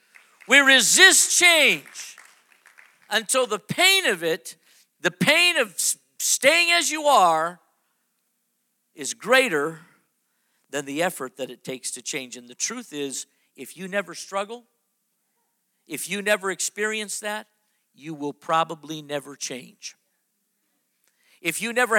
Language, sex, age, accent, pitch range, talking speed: English, male, 50-69, American, 165-235 Hz, 125 wpm